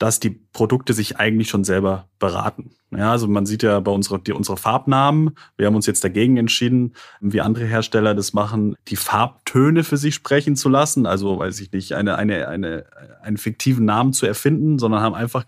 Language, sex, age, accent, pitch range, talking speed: German, male, 30-49, German, 110-130 Hz, 200 wpm